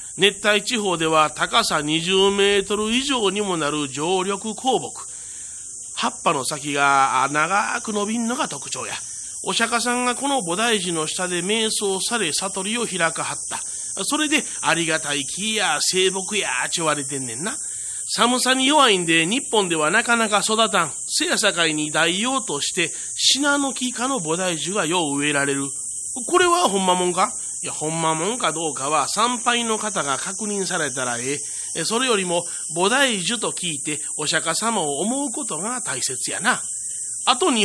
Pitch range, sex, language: 160-230 Hz, male, Japanese